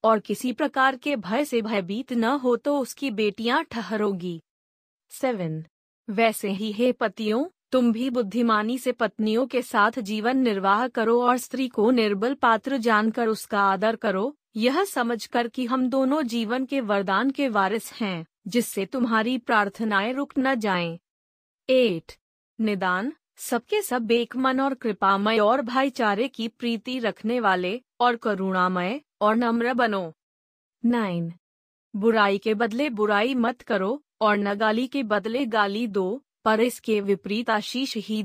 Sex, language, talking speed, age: female, Hindi, 145 wpm, 30-49